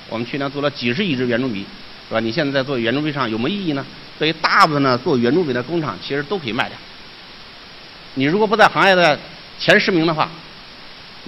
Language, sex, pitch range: Chinese, male, 120-170 Hz